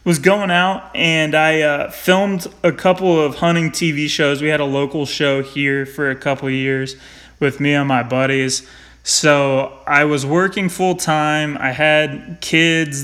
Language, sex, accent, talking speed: English, male, American, 170 wpm